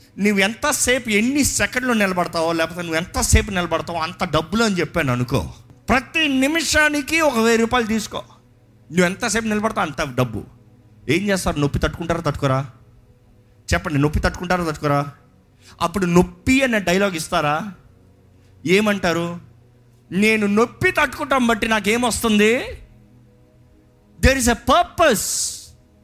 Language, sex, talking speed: Telugu, male, 110 wpm